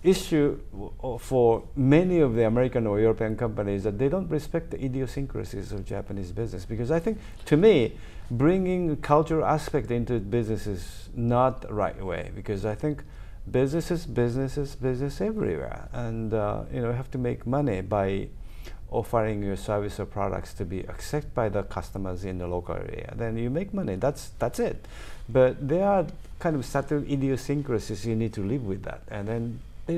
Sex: male